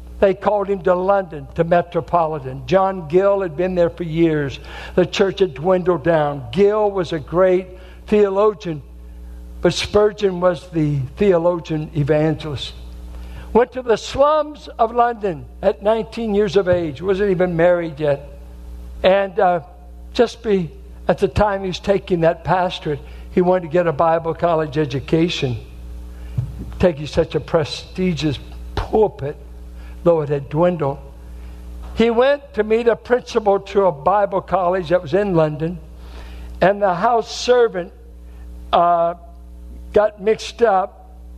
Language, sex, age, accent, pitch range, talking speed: English, male, 60-79, American, 140-205 Hz, 140 wpm